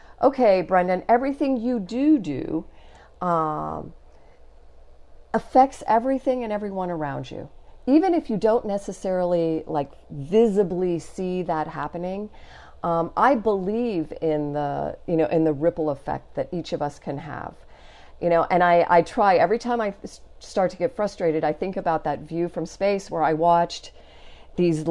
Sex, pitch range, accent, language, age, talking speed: female, 150-200 Hz, American, English, 40-59, 155 wpm